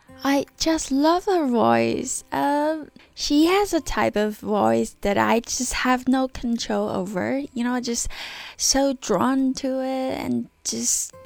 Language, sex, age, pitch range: Chinese, female, 10-29, 205-265 Hz